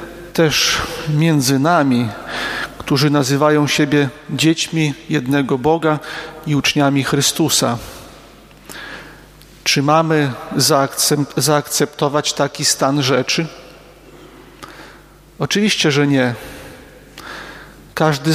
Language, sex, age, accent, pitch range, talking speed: Polish, male, 40-59, native, 145-165 Hz, 70 wpm